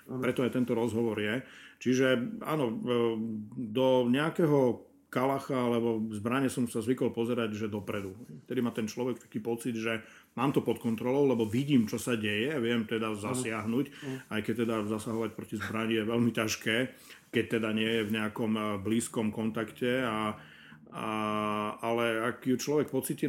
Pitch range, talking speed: 115-130 Hz, 155 wpm